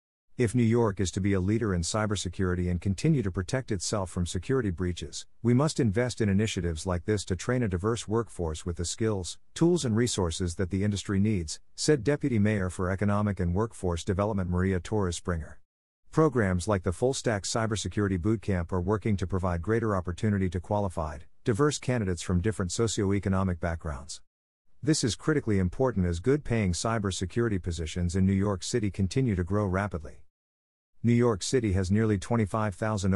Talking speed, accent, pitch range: 170 wpm, American, 90-110 Hz